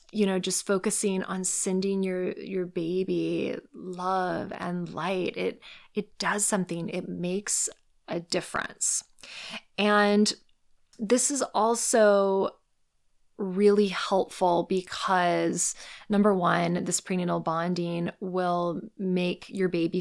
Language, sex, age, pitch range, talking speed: English, female, 20-39, 180-230 Hz, 110 wpm